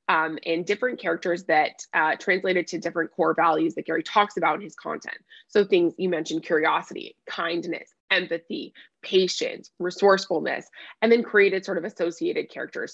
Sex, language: female, English